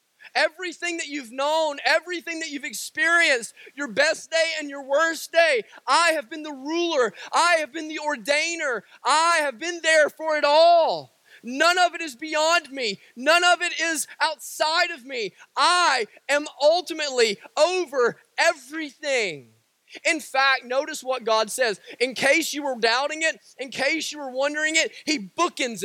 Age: 30-49